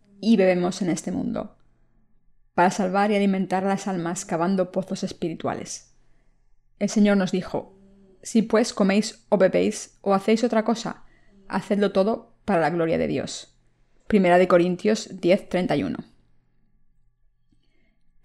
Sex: female